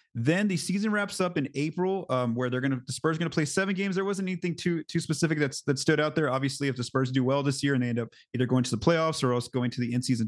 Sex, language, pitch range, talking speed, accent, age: male, English, 125-155 Hz, 310 wpm, American, 30-49